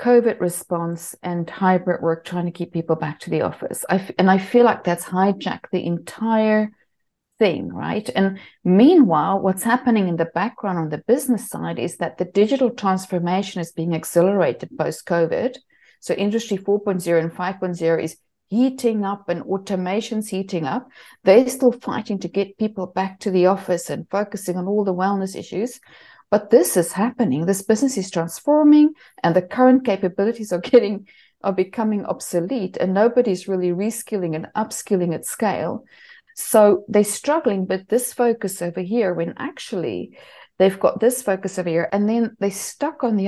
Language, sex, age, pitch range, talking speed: English, female, 50-69, 180-230 Hz, 165 wpm